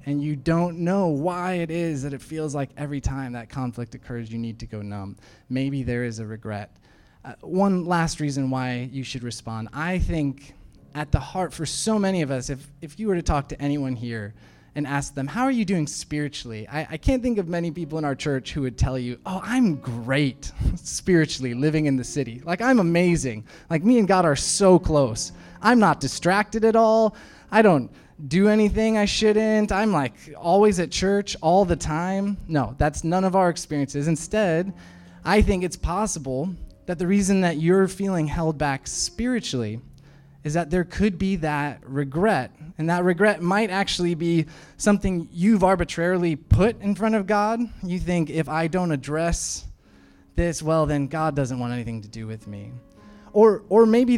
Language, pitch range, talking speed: English, 135-190 Hz, 190 wpm